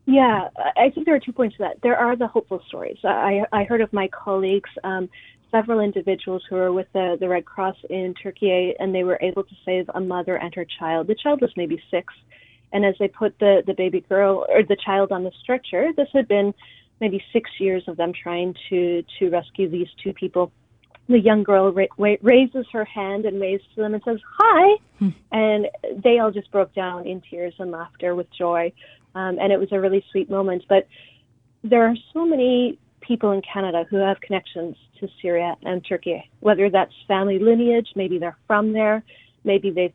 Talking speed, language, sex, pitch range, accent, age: 205 wpm, English, female, 180-215 Hz, American, 30-49